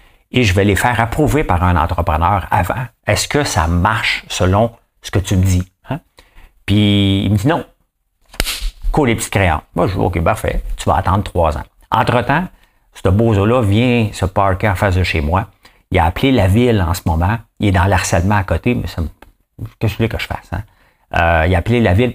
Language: English